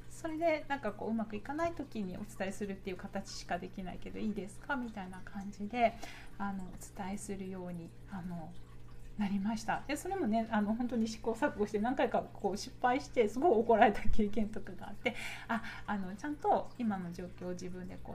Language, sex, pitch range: Japanese, female, 185-230 Hz